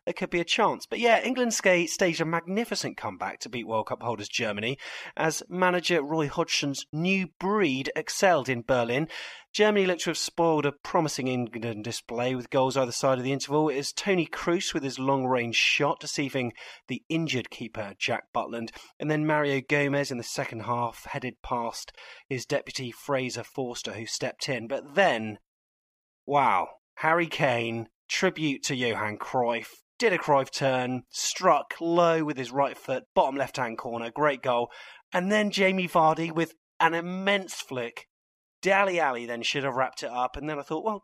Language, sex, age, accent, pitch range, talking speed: English, male, 30-49, British, 125-170 Hz, 175 wpm